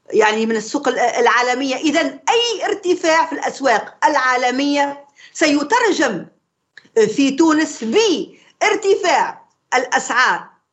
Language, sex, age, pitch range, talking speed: Arabic, female, 50-69, 255-360 Hz, 85 wpm